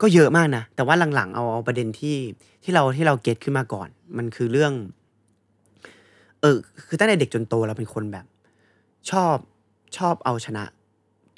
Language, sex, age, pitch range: Thai, male, 30-49, 105-140 Hz